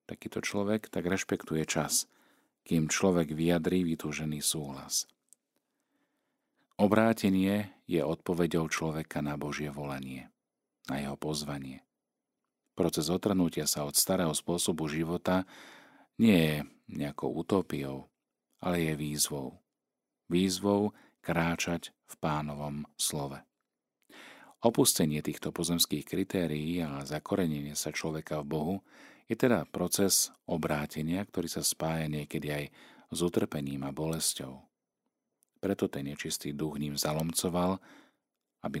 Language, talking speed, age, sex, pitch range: Slovak, 105 wpm, 40-59, male, 75-95 Hz